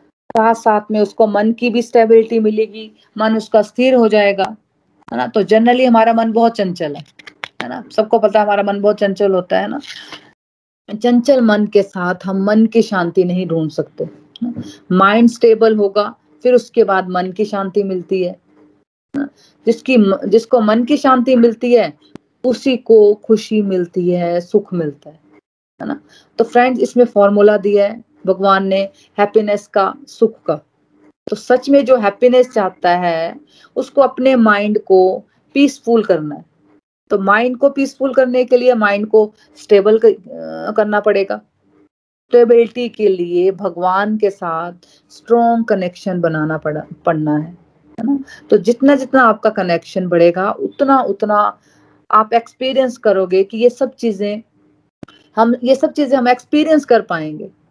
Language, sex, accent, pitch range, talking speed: Hindi, female, native, 190-240 Hz, 155 wpm